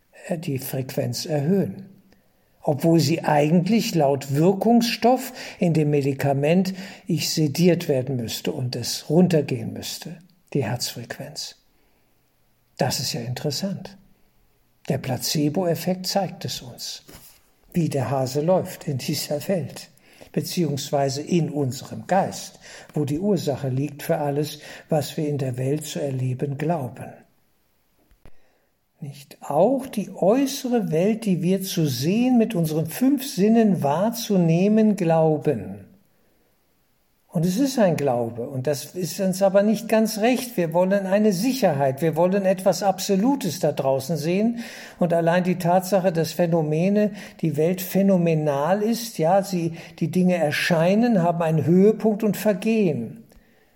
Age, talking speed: 60-79, 125 wpm